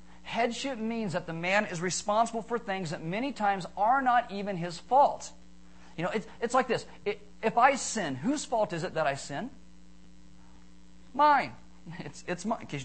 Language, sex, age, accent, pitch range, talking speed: English, male, 40-59, American, 150-220 Hz, 180 wpm